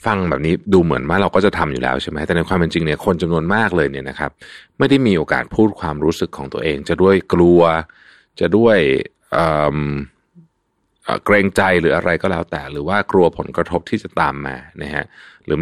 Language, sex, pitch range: Thai, male, 75-100 Hz